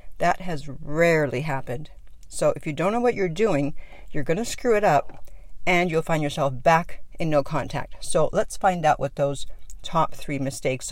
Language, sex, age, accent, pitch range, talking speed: English, female, 50-69, American, 145-180 Hz, 185 wpm